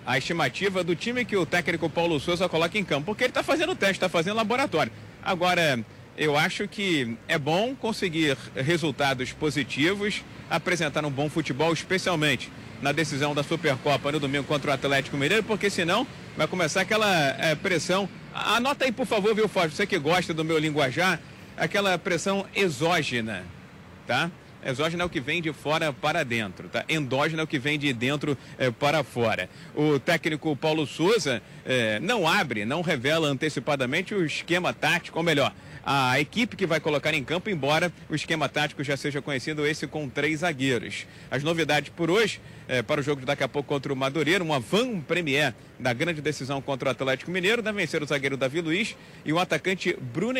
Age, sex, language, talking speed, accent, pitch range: 40-59, male, Portuguese, 185 wpm, Brazilian, 145-180 Hz